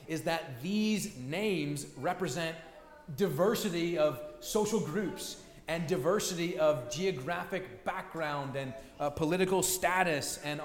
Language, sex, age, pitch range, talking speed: English, male, 30-49, 155-195 Hz, 105 wpm